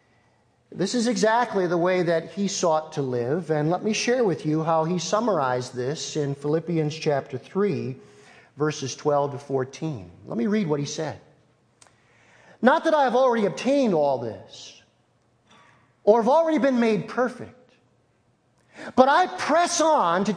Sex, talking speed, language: male, 155 wpm, English